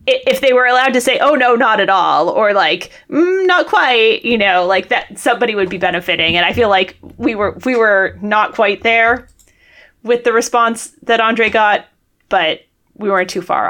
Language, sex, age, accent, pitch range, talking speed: English, female, 20-39, American, 185-250 Hz, 200 wpm